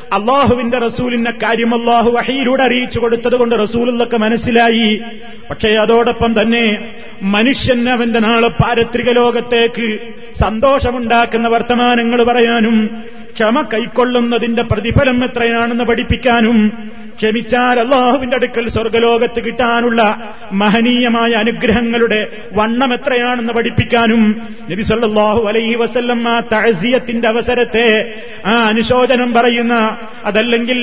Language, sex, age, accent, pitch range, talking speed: Malayalam, male, 30-49, native, 225-240 Hz, 90 wpm